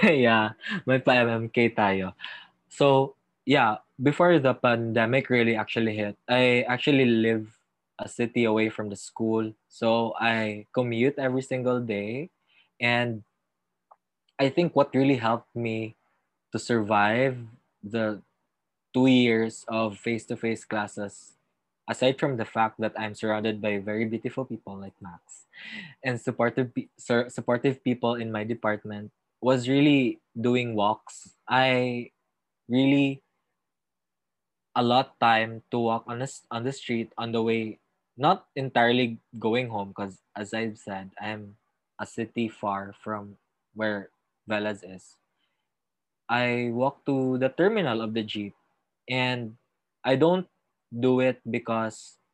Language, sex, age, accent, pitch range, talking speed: Filipino, male, 20-39, native, 110-130 Hz, 125 wpm